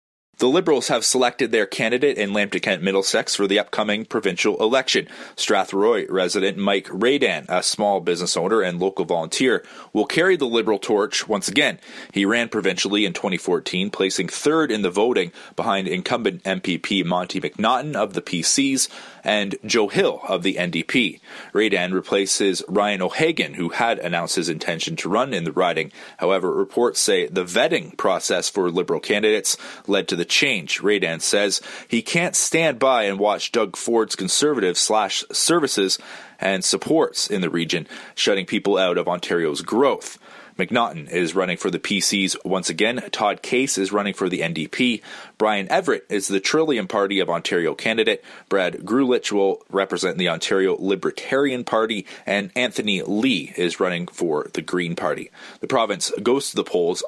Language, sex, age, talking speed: English, male, 30-49, 160 wpm